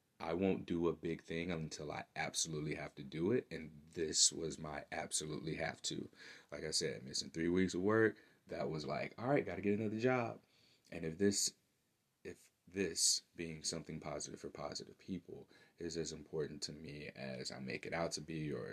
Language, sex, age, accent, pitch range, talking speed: English, male, 30-49, American, 75-85 Hz, 195 wpm